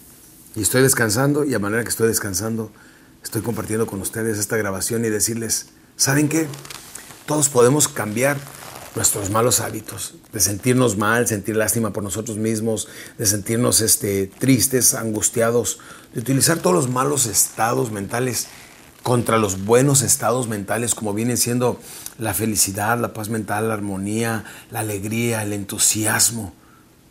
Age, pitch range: 40-59, 110-145 Hz